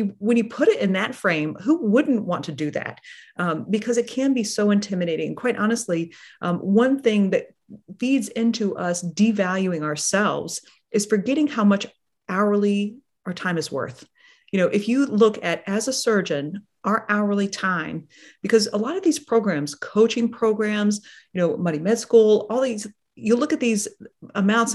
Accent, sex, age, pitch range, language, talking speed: American, female, 40-59, 180-235 Hz, English, 175 wpm